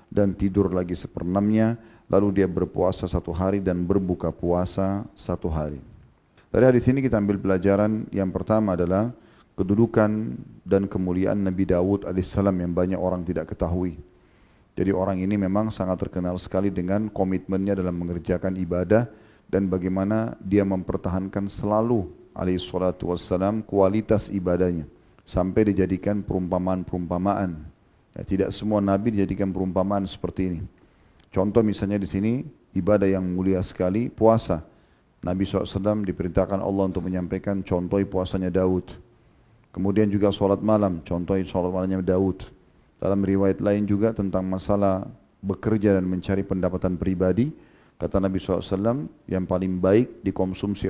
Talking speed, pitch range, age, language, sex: 130 wpm, 90-100 Hz, 40-59, Indonesian, male